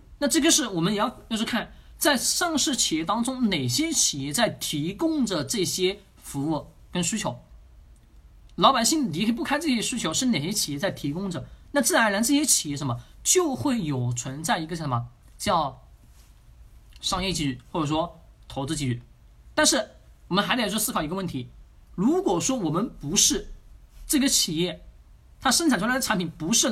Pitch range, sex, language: 150-245 Hz, male, Chinese